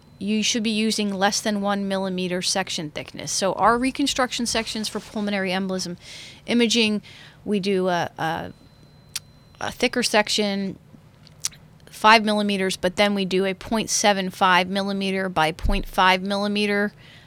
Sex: female